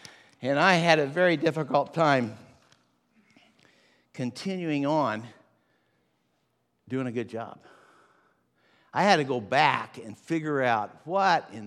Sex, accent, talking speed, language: male, American, 120 wpm, English